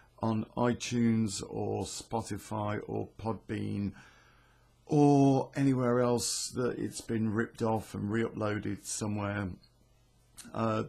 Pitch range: 105-130 Hz